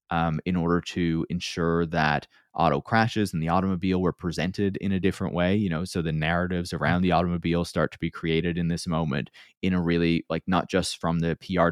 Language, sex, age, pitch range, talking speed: English, male, 20-39, 80-90 Hz, 210 wpm